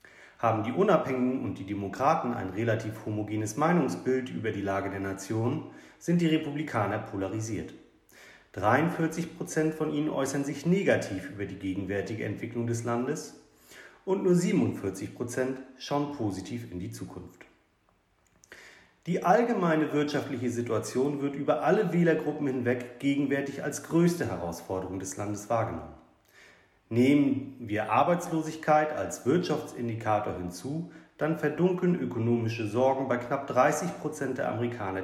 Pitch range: 105-155 Hz